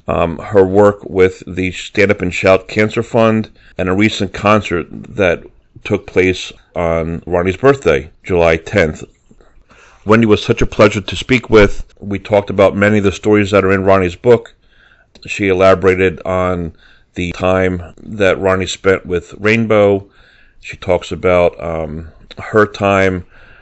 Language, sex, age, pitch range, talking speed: English, male, 40-59, 90-100 Hz, 150 wpm